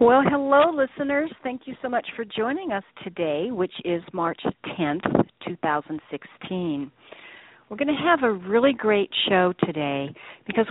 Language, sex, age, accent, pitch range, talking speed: English, female, 50-69, American, 170-220 Hz, 145 wpm